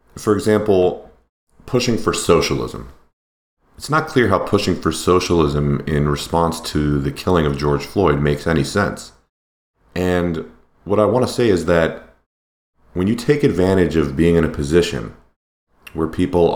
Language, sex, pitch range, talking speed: English, male, 75-85 Hz, 150 wpm